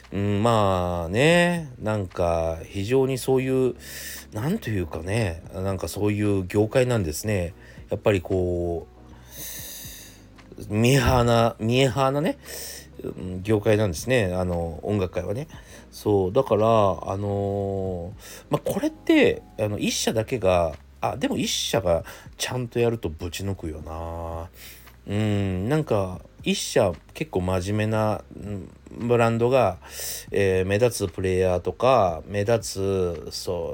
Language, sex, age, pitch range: Japanese, male, 40-59, 90-125 Hz